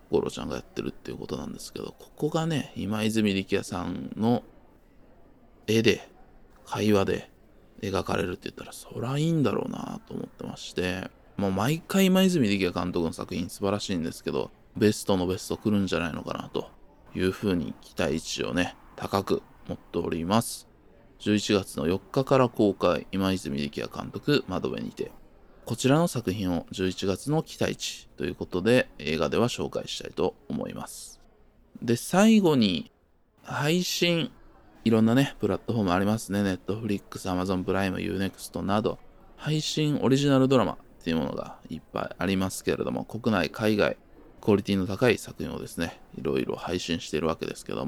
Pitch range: 95-135 Hz